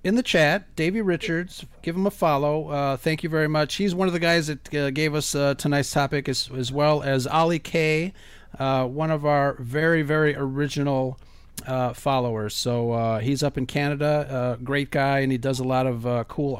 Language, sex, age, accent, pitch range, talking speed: English, male, 40-59, American, 130-165 Hz, 215 wpm